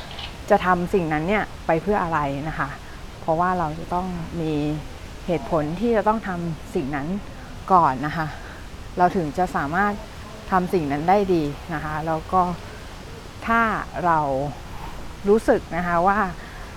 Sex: female